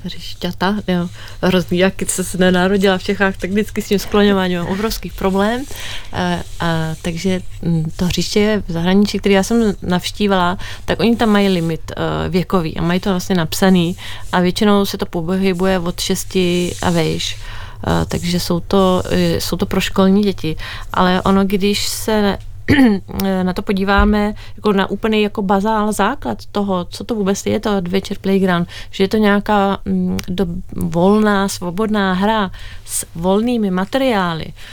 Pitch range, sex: 175-205 Hz, female